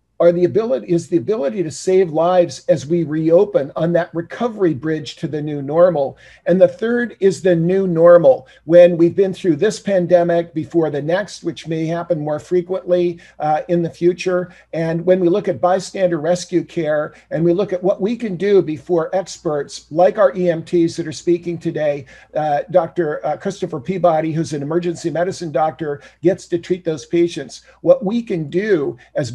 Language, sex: English, male